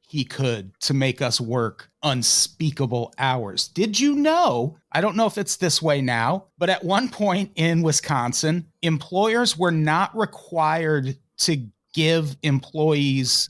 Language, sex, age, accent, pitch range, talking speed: English, male, 30-49, American, 140-175 Hz, 140 wpm